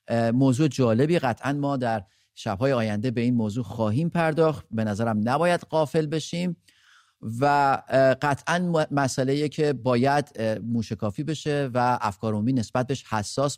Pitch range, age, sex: 105-140 Hz, 30-49, male